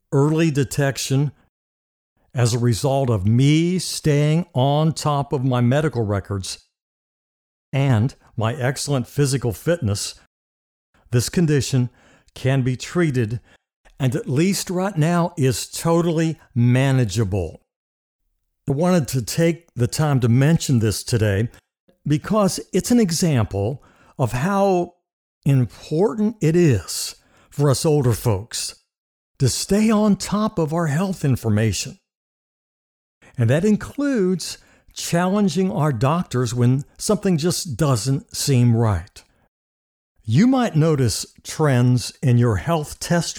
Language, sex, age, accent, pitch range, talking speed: English, male, 60-79, American, 110-170 Hz, 115 wpm